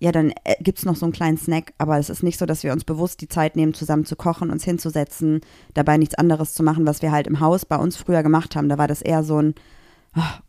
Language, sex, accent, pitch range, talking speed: German, female, German, 155-175 Hz, 275 wpm